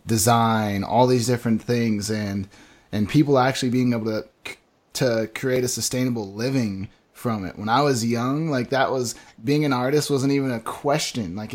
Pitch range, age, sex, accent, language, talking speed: 105-125 Hz, 20-39, male, American, English, 175 wpm